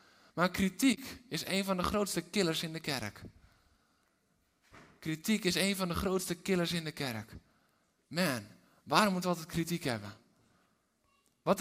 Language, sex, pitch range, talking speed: Dutch, male, 130-200 Hz, 150 wpm